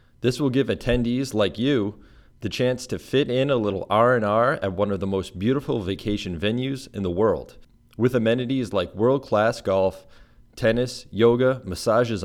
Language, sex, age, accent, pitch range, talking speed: English, male, 30-49, American, 100-125 Hz, 160 wpm